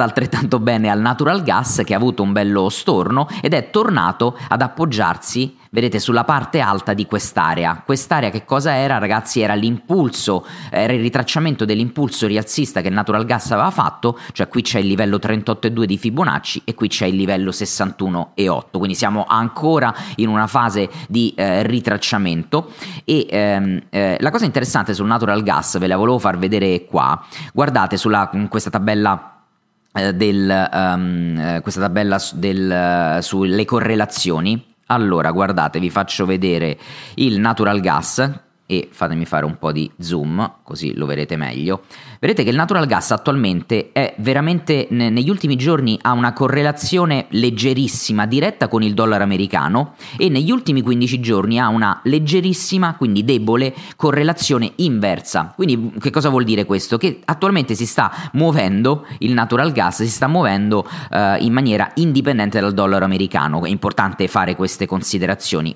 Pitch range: 100-130 Hz